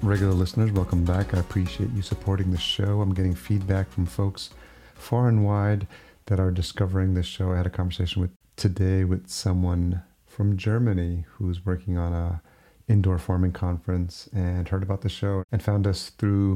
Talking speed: 180 wpm